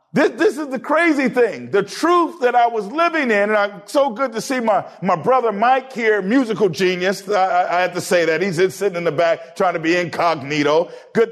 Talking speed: 230 wpm